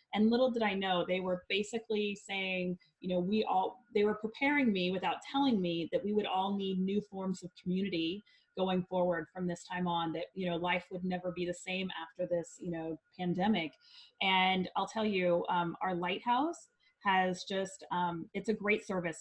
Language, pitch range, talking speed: English, 175-210 Hz, 195 wpm